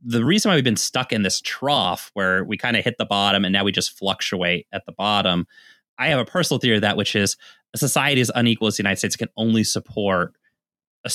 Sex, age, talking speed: male, 20-39, 240 wpm